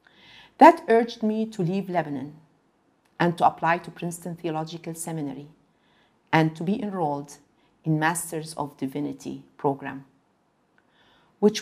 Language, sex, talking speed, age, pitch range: English, female, 120 wpm, 50-69, 150-200 Hz